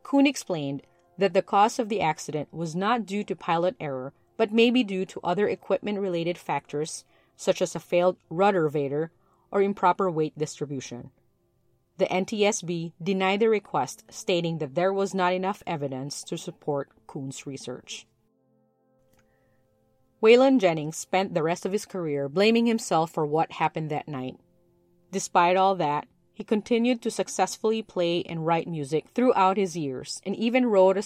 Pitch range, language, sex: 145-195 Hz, English, female